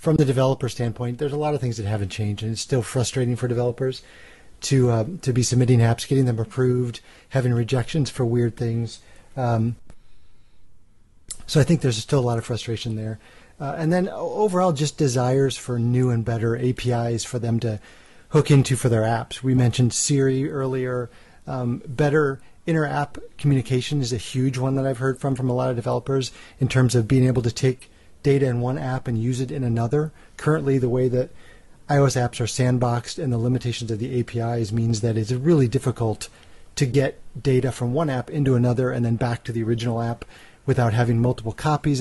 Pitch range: 115-135 Hz